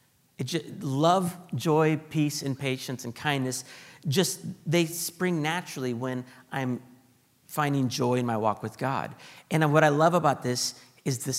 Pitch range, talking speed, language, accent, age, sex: 125-155 Hz, 150 wpm, English, American, 50-69, male